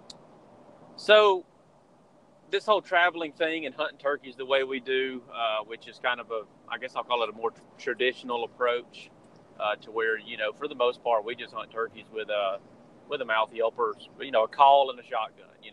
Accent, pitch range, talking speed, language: American, 110-165 Hz, 210 wpm, English